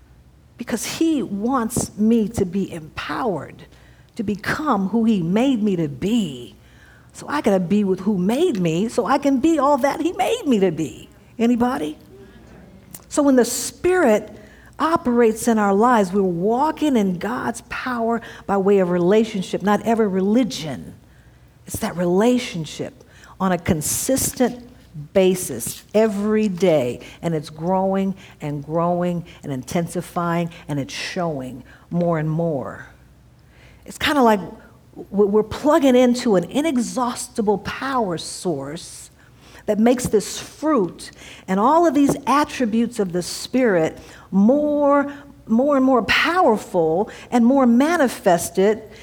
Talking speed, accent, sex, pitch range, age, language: 130 wpm, American, female, 175-255 Hz, 50-69, English